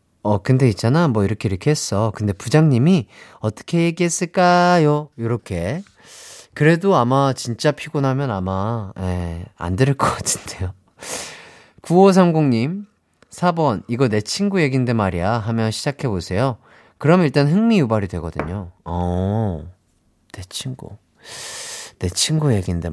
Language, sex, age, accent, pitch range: Korean, male, 30-49, native, 105-160 Hz